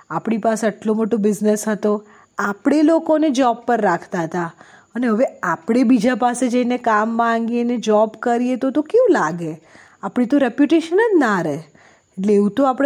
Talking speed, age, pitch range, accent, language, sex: 110 wpm, 20-39, 200-250 Hz, Indian, English, female